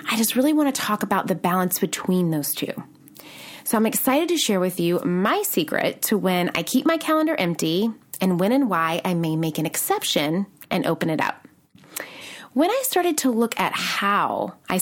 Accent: American